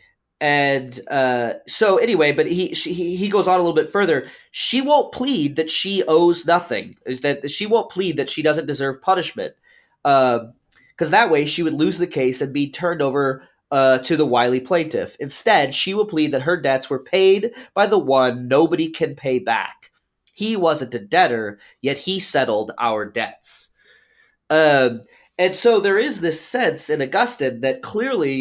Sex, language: male, English